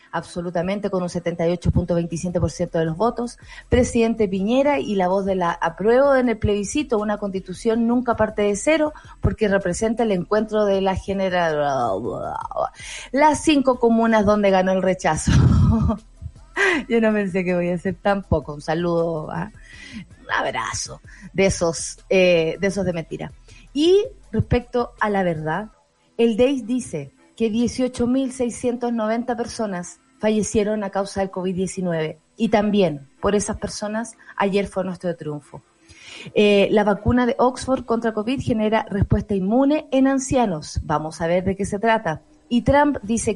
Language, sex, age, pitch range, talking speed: Spanish, female, 30-49, 185-235 Hz, 145 wpm